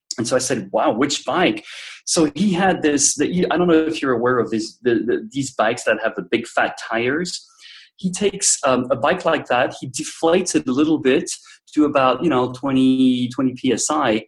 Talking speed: 210 wpm